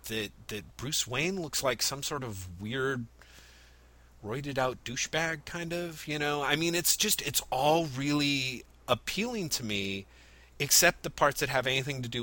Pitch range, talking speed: 105-140 Hz, 170 wpm